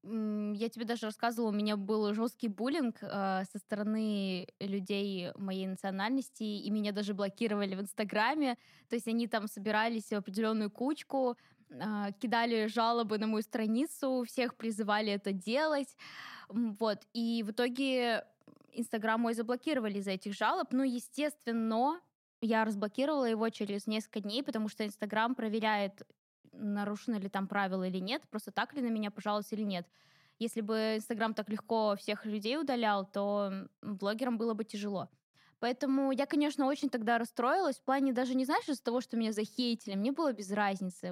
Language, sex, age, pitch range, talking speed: Russian, female, 10-29, 210-255 Hz, 160 wpm